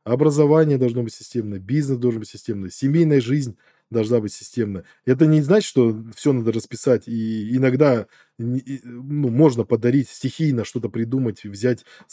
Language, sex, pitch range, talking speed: Russian, male, 105-135 Hz, 145 wpm